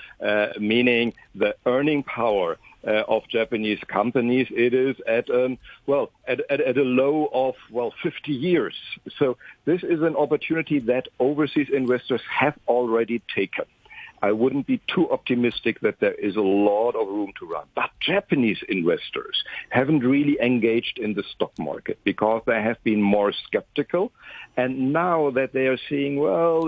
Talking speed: 160 wpm